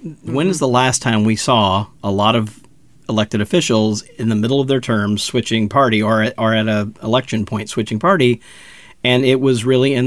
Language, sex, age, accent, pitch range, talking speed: English, male, 40-59, American, 110-125 Hz, 195 wpm